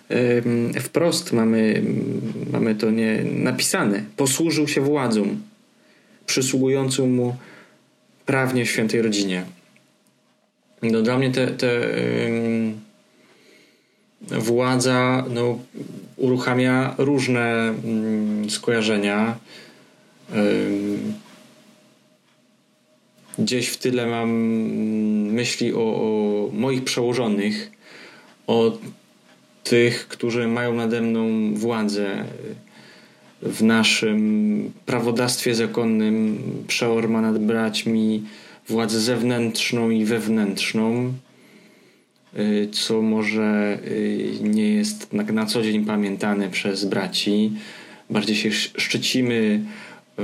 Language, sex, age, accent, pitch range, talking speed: Polish, male, 20-39, native, 110-125 Hz, 80 wpm